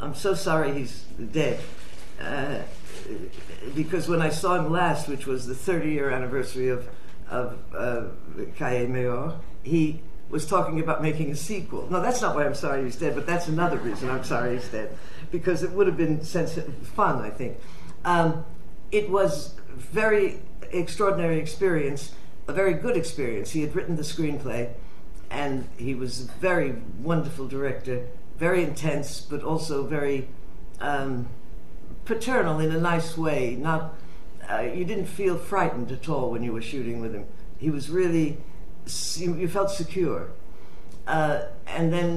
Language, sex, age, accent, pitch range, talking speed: English, female, 60-79, American, 125-165 Hz, 155 wpm